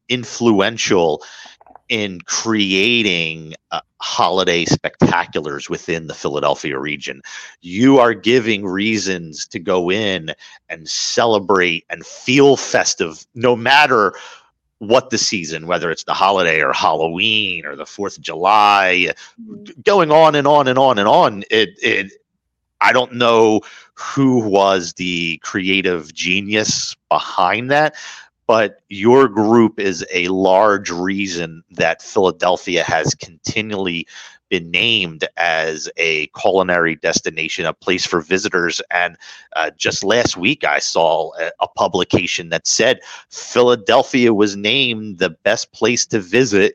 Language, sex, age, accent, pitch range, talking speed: English, male, 40-59, American, 90-115 Hz, 125 wpm